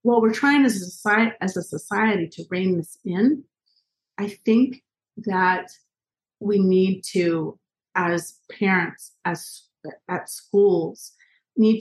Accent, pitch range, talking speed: American, 175-225 Hz, 125 wpm